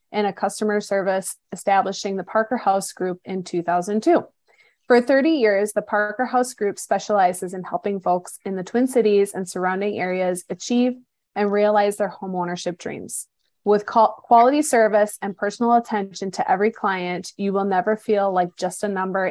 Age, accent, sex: 20-39, American, female